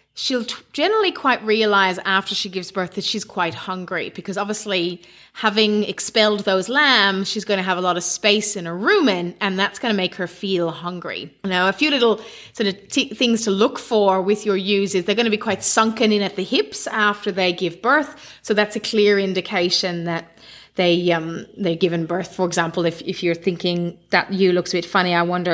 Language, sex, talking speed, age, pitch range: English, female, 210 wpm, 30-49, 180-220 Hz